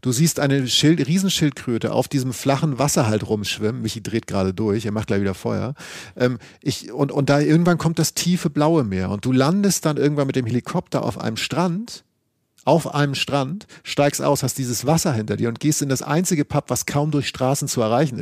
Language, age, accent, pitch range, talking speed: German, 40-59, German, 115-150 Hz, 210 wpm